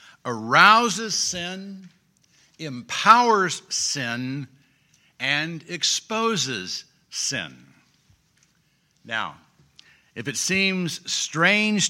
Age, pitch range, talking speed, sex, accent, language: 60-79, 135-180 Hz, 60 wpm, male, American, English